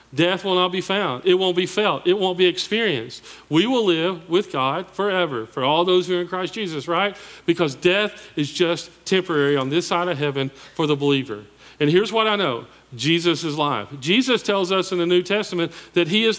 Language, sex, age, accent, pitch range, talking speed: English, male, 40-59, American, 135-195 Hz, 215 wpm